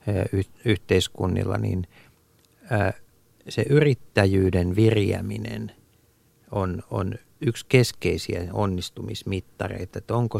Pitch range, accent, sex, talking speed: 95-110 Hz, native, male, 70 wpm